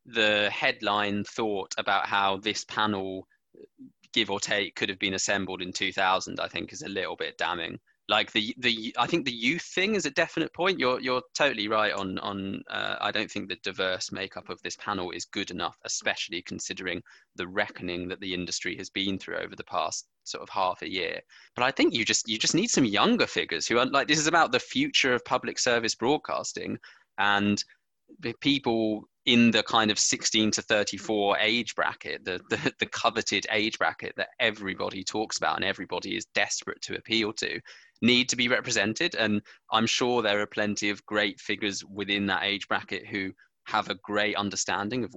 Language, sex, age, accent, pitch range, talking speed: English, male, 20-39, British, 100-125 Hz, 195 wpm